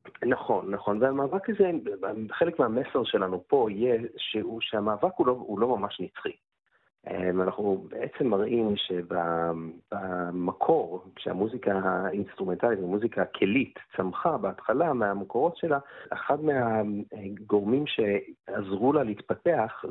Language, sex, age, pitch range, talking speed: Hebrew, male, 40-59, 95-125 Hz, 100 wpm